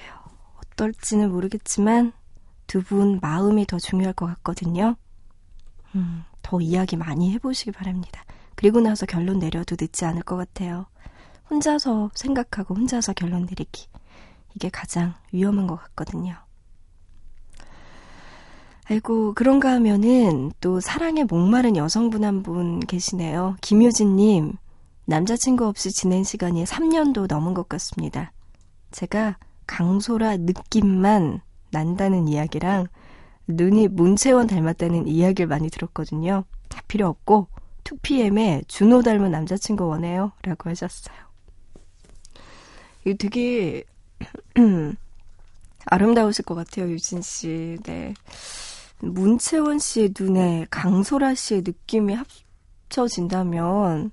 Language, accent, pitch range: Korean, native, 170-215 Hz